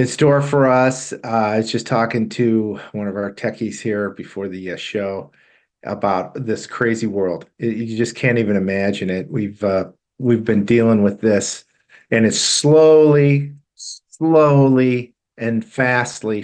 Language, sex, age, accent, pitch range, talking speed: English, male, 50-69, American, 100-130 Hz, 155 wpm